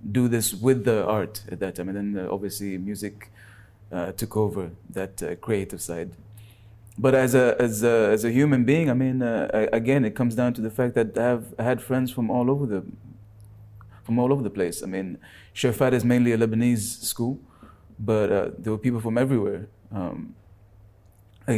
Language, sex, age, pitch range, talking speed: English, male, 30-49, 105-125 Hz, 195 wpm